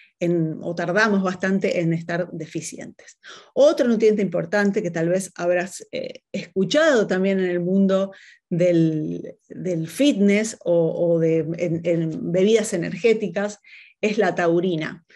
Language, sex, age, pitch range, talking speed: Spanish, female, 30-49, 180-220 Hz, 120 wpm